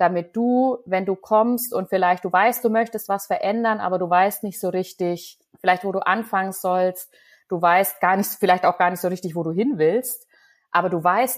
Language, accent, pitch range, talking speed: German, German, 175-215 Hz, 215 wpm